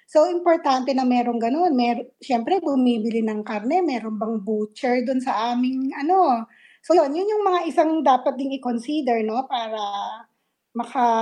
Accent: native